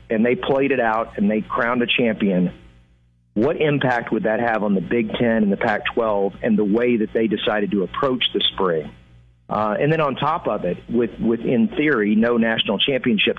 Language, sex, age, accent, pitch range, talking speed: English, male, 40-59, American, 100-125 Hz, 205 wpm